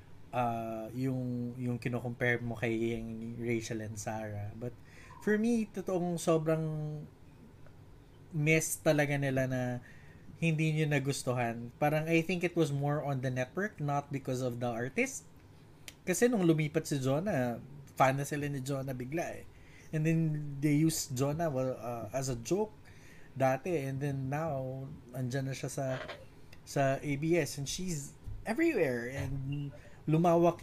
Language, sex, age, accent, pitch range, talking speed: Filipino, male, 20-39, native, 125-165 Hz, 140 wpm